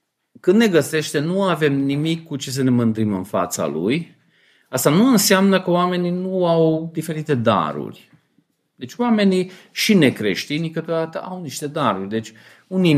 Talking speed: 155 wpm